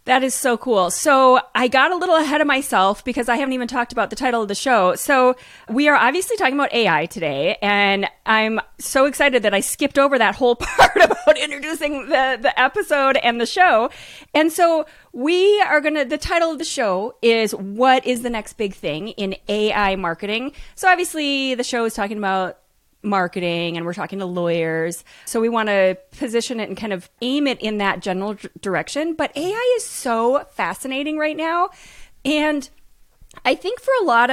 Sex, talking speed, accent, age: female, 195 wpm, American, 30-49